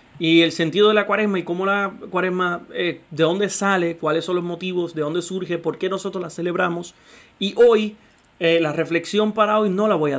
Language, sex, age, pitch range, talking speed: Spanish, male, 30-49, 150-185 Hz, 220 wpm